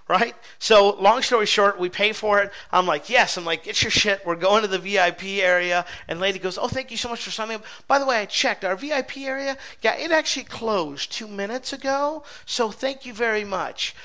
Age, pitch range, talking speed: 40-59, 170-230 Hz, 235 wpm